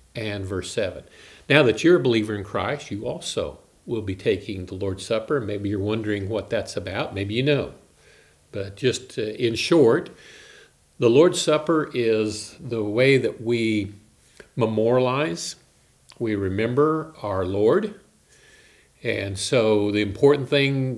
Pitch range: 105-130 Hz